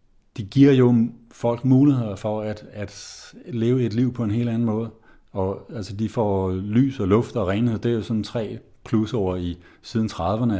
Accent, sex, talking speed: native, male, 200 wpm